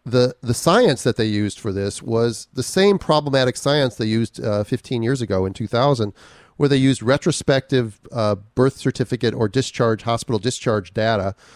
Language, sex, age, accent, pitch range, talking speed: English, male, 40-59, American, 110-140 Hz, 175 wpm